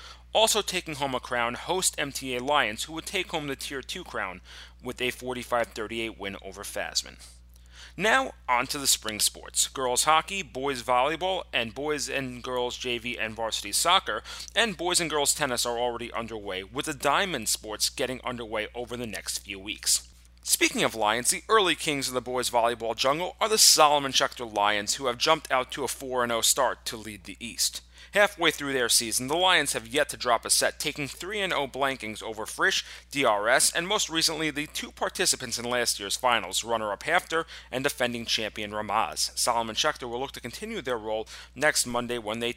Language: English